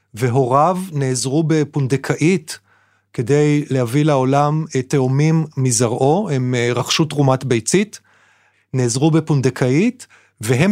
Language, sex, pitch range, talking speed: Hebrew, male, 125-160 Hz, 85 wpm